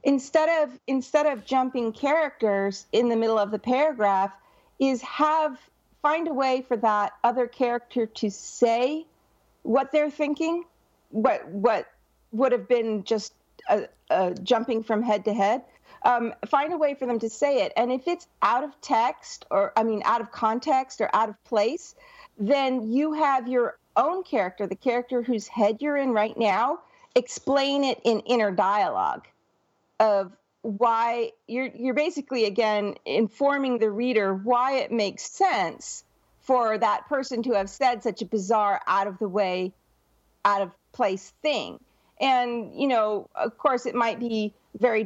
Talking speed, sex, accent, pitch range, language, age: 155 wpm, female, American, 210-265 Hz, English, 50-69